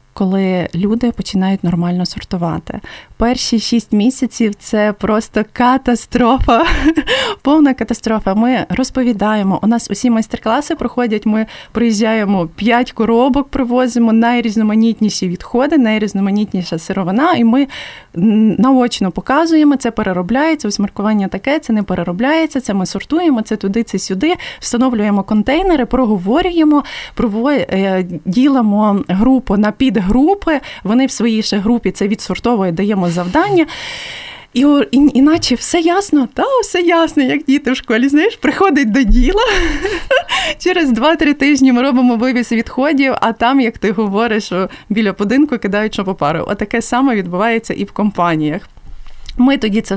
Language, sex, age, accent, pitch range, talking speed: Ukrainian, female, 20-39, native, 205-275 Hz, 130 wpm